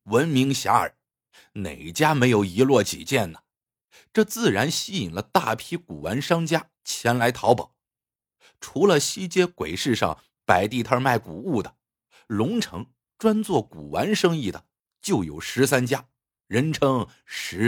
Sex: male